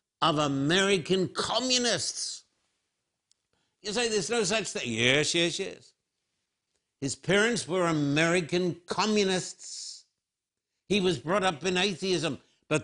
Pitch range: 140-185 Hz